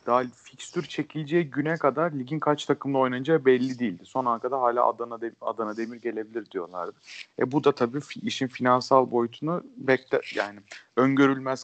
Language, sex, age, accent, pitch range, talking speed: Turkish, male, 40-59, native, 110-130 Hz, 160 wpm